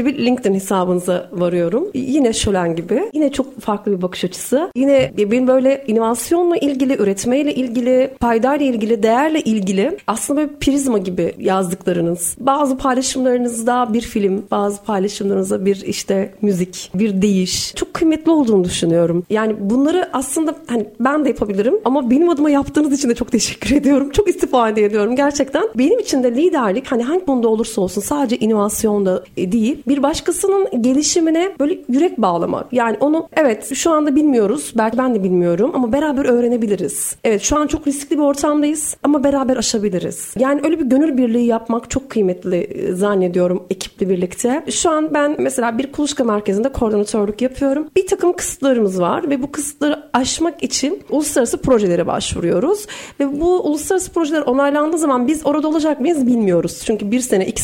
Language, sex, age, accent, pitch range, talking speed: Turkish, female, 40-59, native, 210-295 Hz, 160 wpm